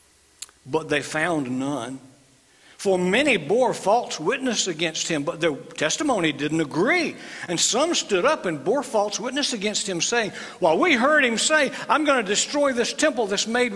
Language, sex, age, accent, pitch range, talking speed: English, male, 60-79, American, 150-225 Hz, 175 wpm